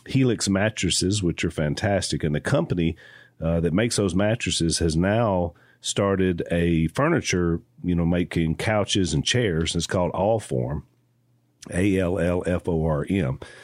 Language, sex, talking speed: English, male, 130 wpm